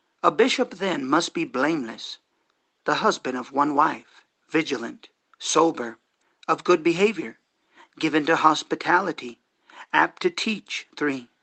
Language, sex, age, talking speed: English, male, 50-69, 120 wpm